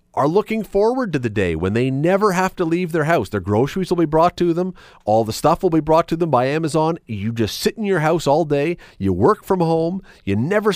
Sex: male